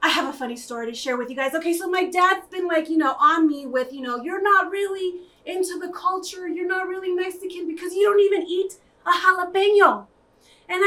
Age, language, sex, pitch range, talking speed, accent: 30-49, English, female, 260-385 Hz, 225 wpm, American